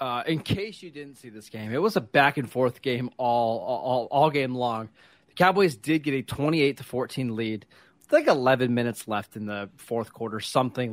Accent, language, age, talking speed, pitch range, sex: American, English, 20-39, 215 wpm, 120-145 Hz, male